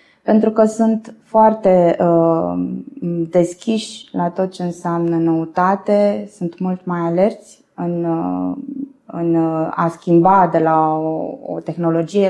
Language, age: Romanian, 20-39